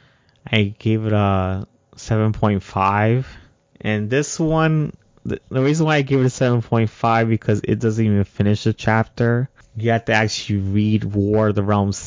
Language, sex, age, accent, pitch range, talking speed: English, male, 20-39, American, 105-120 Hz, 165 wpm